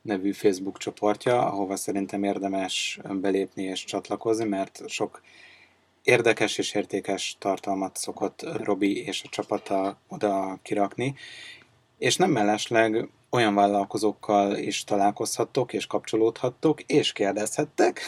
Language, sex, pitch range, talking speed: Hungarian, male, 100-110 Hz, 110 wpm